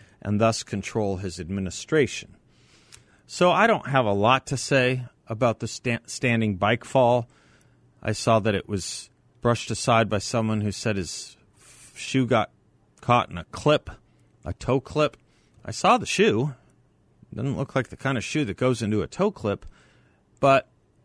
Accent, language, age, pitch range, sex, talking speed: American, English, 40-59, 95-125 Hz, male, 165 wpm